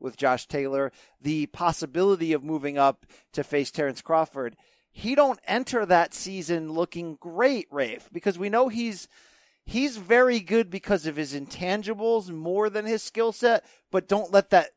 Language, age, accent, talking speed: English, 40-59, American, 165 wpm